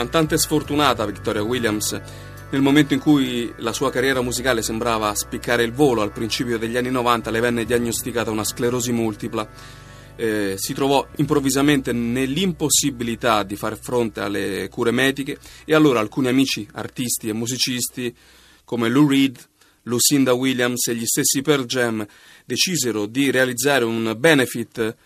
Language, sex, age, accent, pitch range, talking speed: Italian, male, 30-49, native, 110-135 Hz, 145 wpm